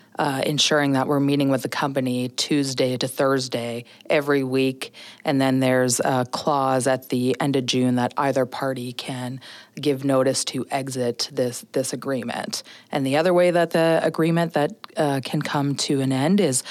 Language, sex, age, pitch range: English, female, 30-49, 130-150 Hz